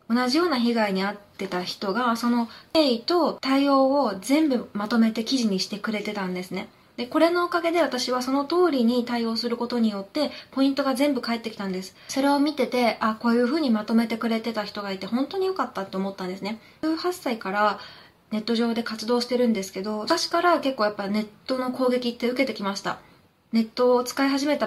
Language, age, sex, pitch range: Japanese, 20-39, female, 210-270 Hz